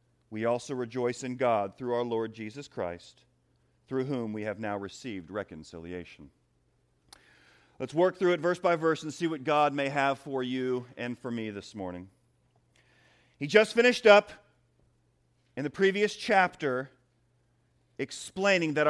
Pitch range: 120-195 Hz